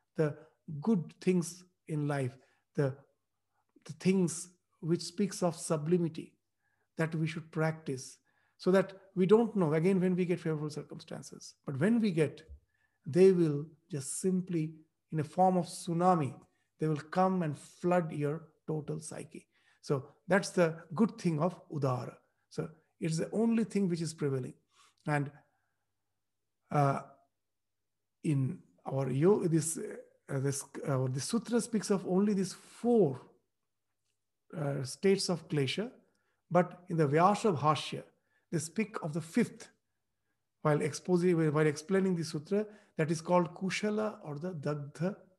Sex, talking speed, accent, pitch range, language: male, 140 wpm, Indian, 145-185 Hz, English